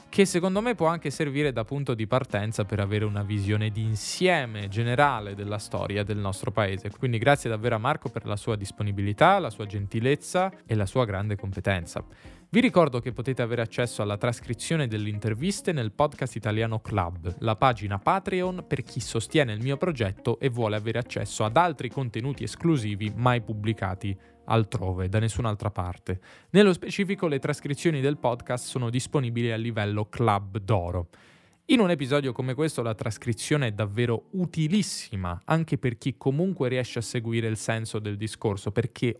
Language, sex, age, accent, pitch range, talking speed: Italian, male, 10-29, native, 110-150 Hz, 165 wpm